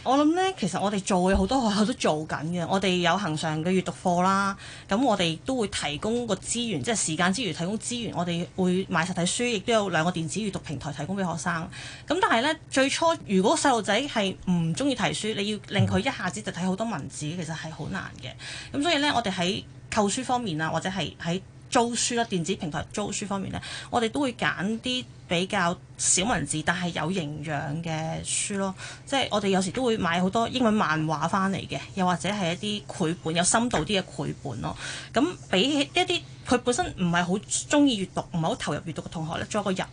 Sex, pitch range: female, 165-225 Hz